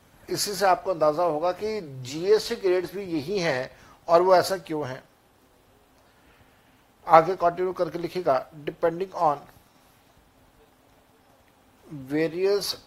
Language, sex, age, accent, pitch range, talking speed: Hindi, male, 60-79, native, 160-195 Hz, 100 wpm